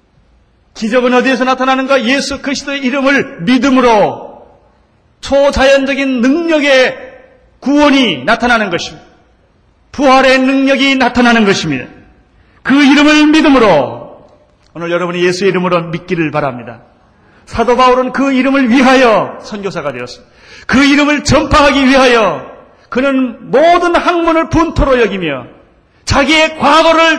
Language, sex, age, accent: Korean, male, 40-59, native